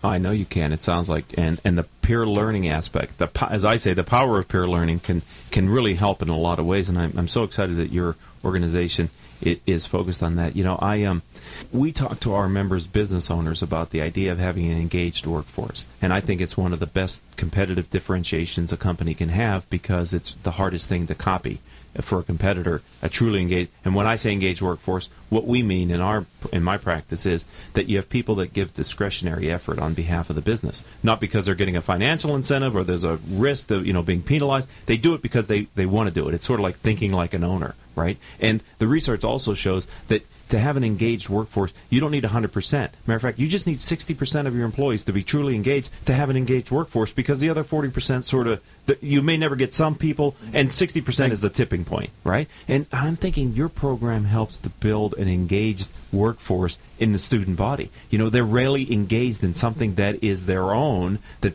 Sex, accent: male, American